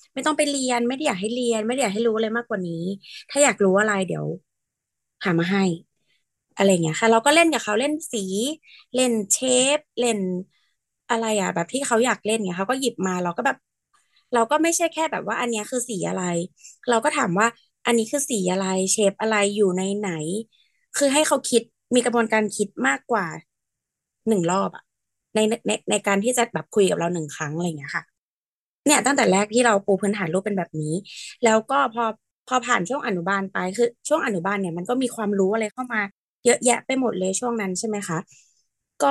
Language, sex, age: Thai, female, 20-39